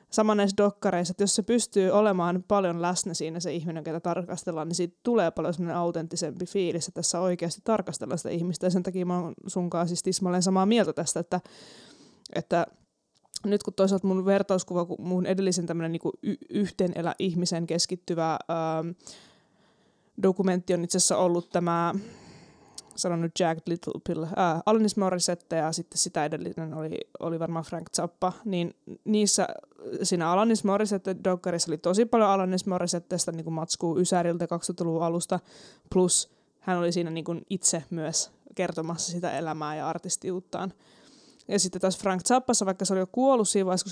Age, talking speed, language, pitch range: 20-39, 155 wpm, Finnish, 170-195 Hz